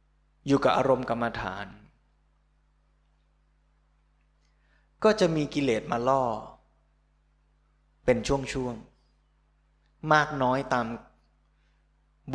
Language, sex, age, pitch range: Thai, male, 20-39, 105-135 Hz